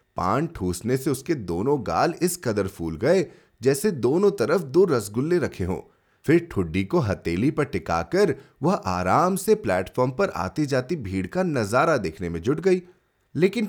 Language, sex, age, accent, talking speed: Hindi, male, 30-49, native, 140 wpm